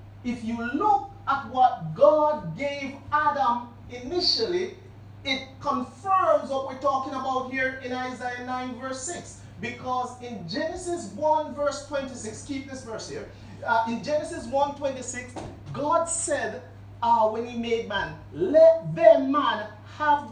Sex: male